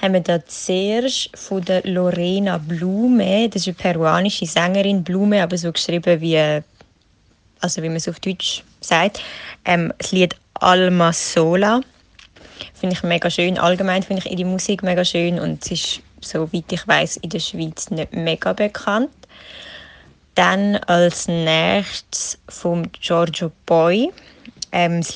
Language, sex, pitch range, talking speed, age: German, female, 170-195 Hz, 140 wpm, 20-39